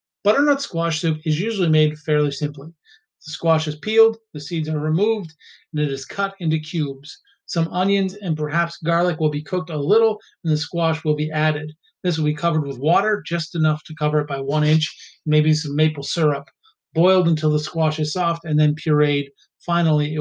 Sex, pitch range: male, 150-175 Hz